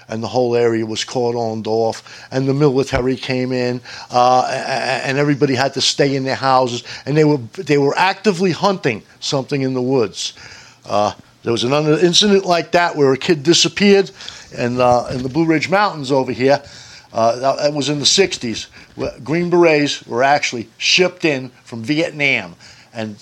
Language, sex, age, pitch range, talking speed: English, male, 50-69, 115-150 Hz, 180 wpm